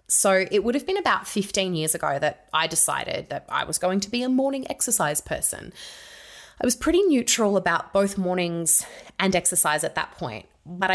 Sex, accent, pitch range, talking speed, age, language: female, Australian, 155-190 Hz, 190 wpm, 20-39, English